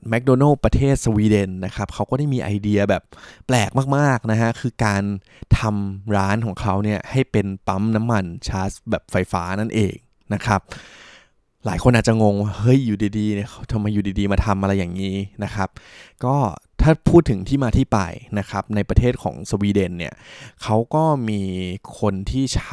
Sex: male